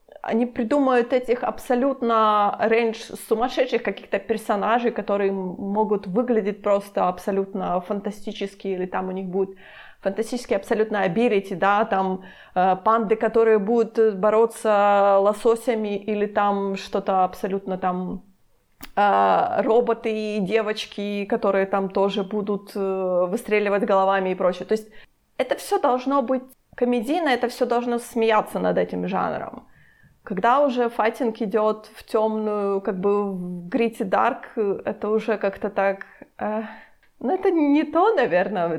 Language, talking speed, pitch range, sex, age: Ukrainian, 125 wpm, 190-225 Hz, female, 30-49